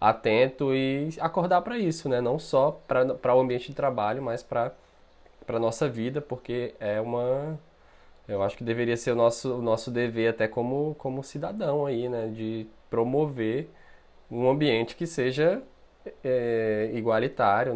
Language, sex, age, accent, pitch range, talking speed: Portuguese, male, 20-39, Brazilian, 110-130 Hz, 145 wpm